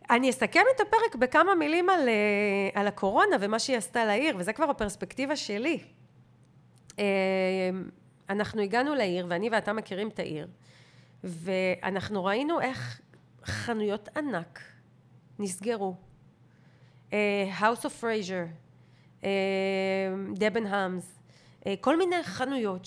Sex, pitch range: female, 195-275 Hz